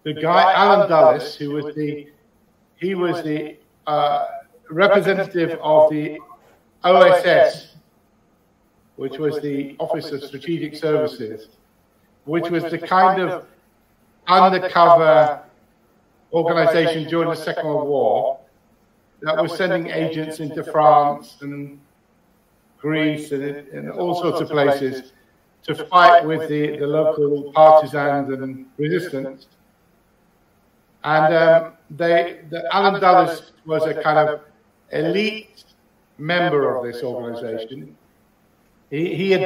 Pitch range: 150-175 Hz